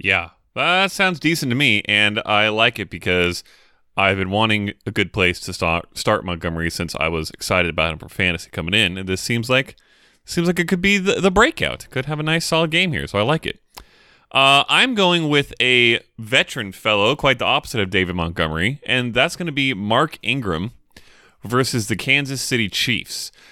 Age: 20-39